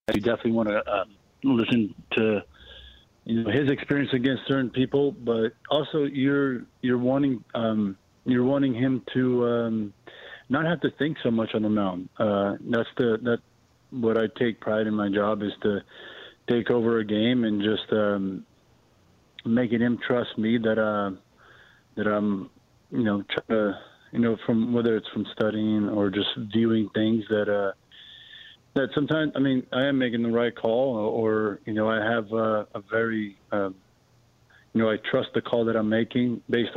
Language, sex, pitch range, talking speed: English, male, 105-120 Hz, 180 wpm